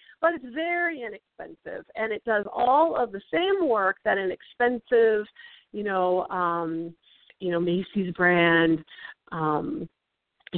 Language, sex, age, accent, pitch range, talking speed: English, female, 40-59, American, 190-310 Hz, 130 wpm